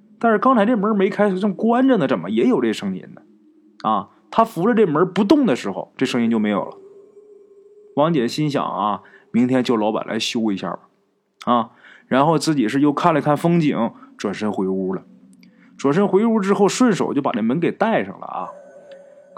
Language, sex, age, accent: Chinese, male, 20-39, native